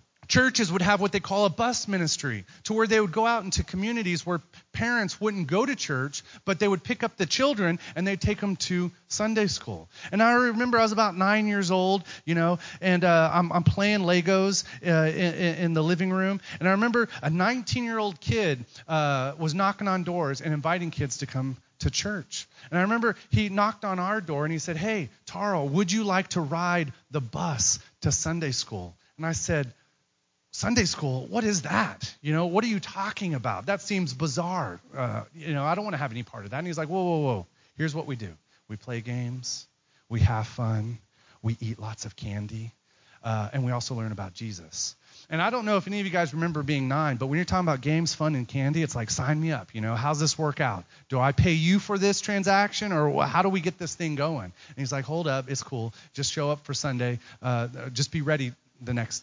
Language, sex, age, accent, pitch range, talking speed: English, male, 30-49, American, 130-195 Hz, 225 wpm